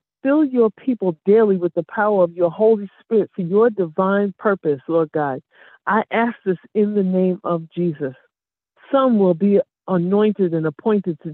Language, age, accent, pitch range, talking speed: English, 50-69, American, 175-225 Hz, 170 wpm